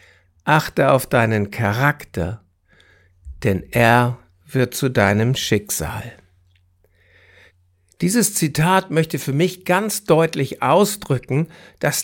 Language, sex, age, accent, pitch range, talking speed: German, male, 60-79, German, 120-180 Hz, 95 wpm